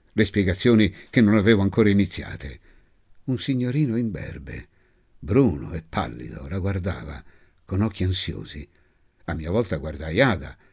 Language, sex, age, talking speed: Italian, male, 60-79, 135 wpm